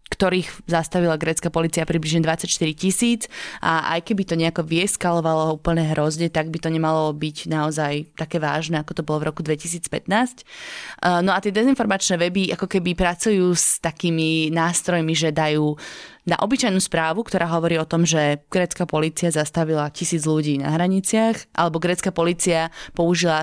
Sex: female